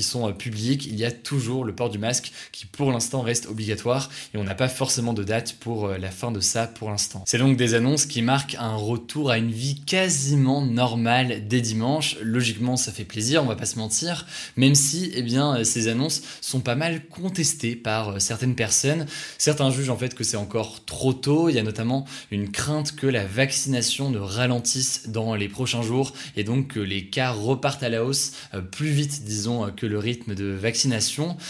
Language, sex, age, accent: French, male, 20-39, French